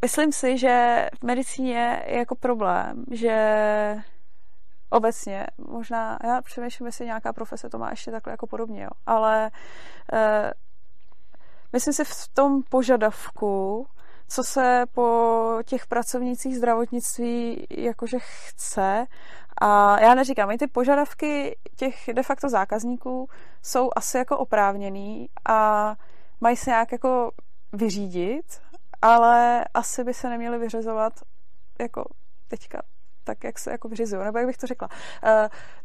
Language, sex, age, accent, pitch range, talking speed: Czech, female, 20-39, native, 220-255 Hz, 125 wpm